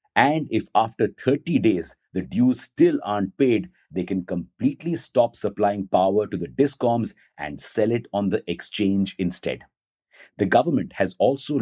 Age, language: 50-69, English